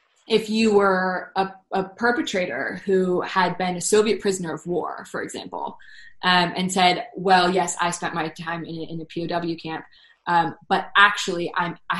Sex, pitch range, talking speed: female, 165-190 Hz, 175 wpm